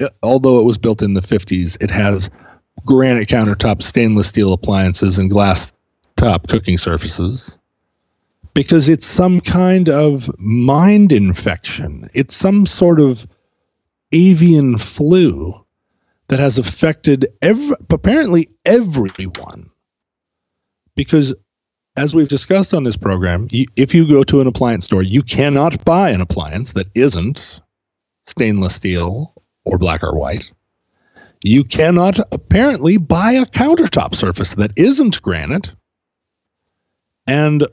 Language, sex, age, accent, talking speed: English, male, 40-59, American, 120 wpm